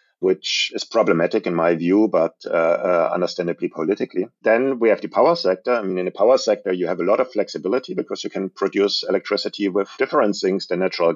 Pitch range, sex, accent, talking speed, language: 90-110 Hz, male, German, 210 wpm, English